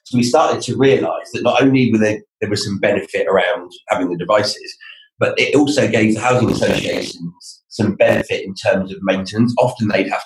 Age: 30-49